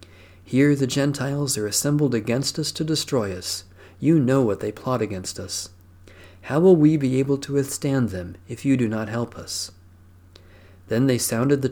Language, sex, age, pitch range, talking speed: English, male, 50-69, 95-135 Hz, 180 wpm